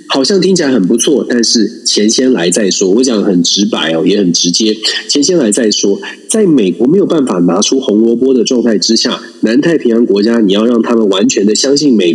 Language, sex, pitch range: Chinese, male, 105-165 Hz